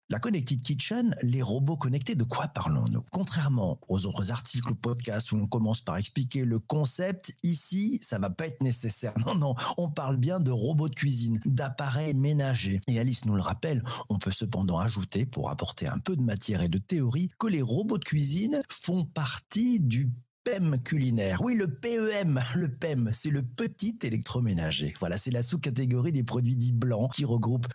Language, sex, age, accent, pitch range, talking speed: French, male, 50-69, French, 110-150 Hz, 190 wpm